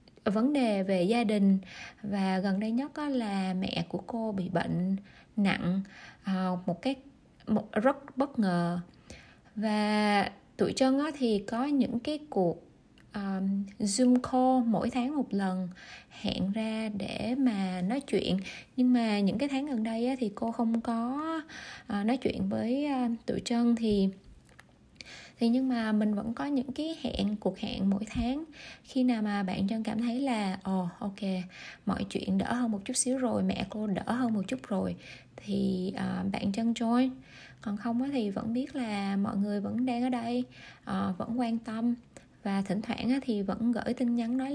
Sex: female